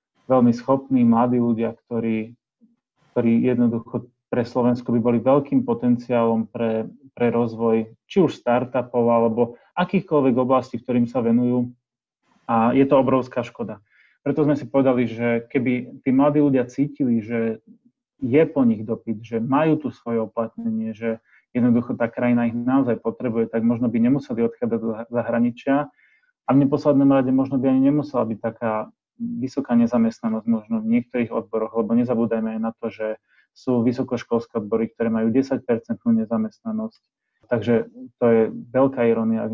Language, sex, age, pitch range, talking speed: Slovak, male, 30-49, 115-135 Hz, 150 wpm